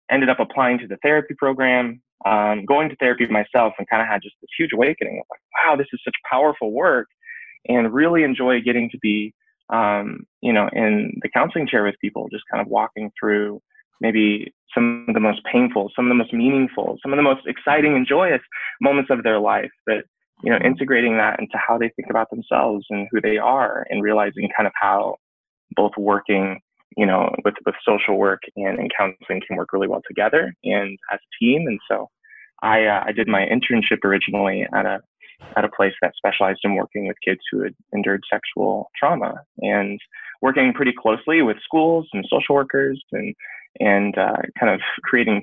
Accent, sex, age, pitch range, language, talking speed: American, male, 20-39, 105-135 Hz, English, 200 wpm